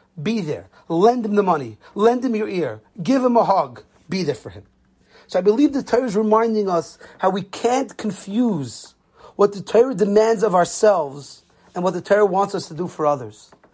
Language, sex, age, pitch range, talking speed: English, male, 30-49, 180-225 Hz, 200 wpm